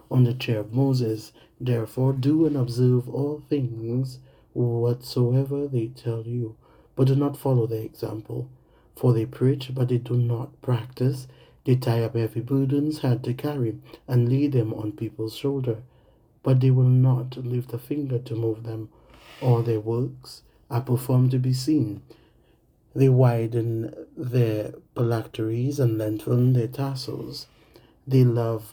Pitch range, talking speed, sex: 115-135 Hz, 150 wpm, male